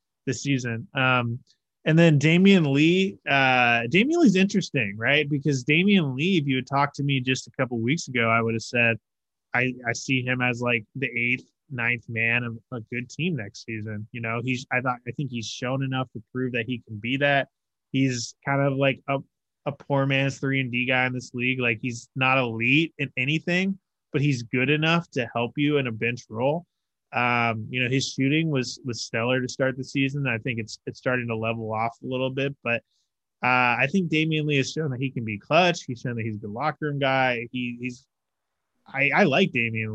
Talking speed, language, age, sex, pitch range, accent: 220 wpm, English, 20-39, male, 115-140 Hz, American